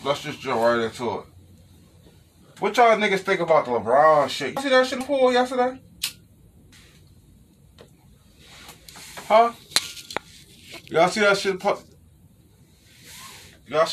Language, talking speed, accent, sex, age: English, 95 wpm, American, male, 20-39